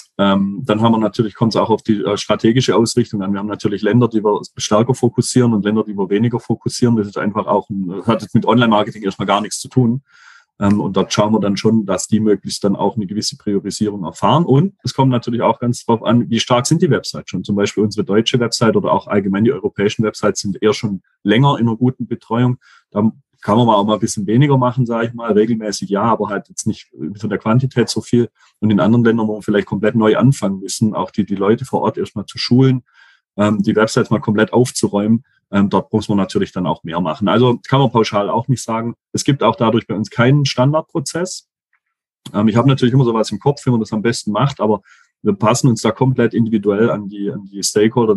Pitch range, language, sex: 105-120 Hz, German, male